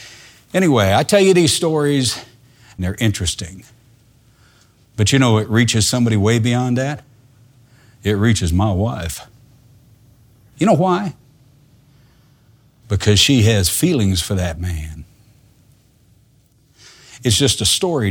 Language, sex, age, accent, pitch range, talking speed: English, male, 60-79, American, 110-135 Hz, 120 wpm